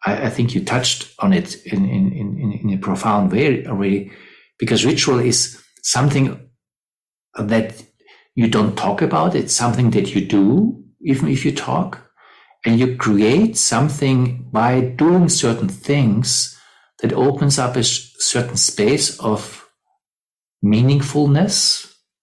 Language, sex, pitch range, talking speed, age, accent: English, male, 105-135 Hz, 125 wpm, 60-79, German